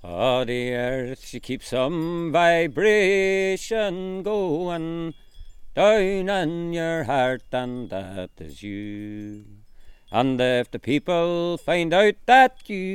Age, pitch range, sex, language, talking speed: 40-59, 105-175 Hz, male, English, 110 wpm